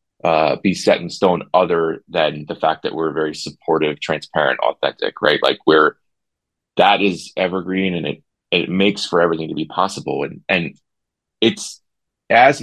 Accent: American